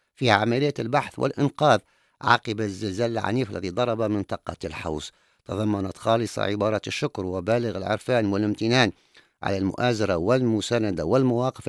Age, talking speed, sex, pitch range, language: 50-69, 115 wpm, male, 95-125 Hz, English